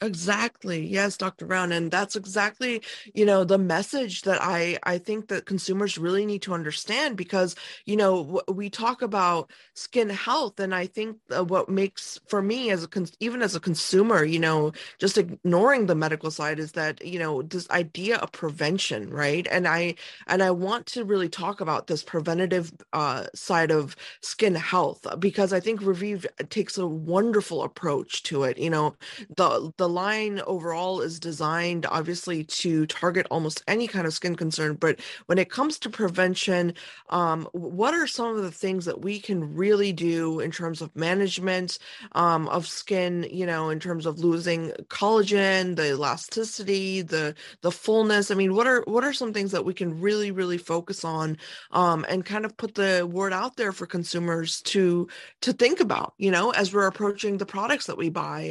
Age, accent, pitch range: 20-39, American, 170-205 Hz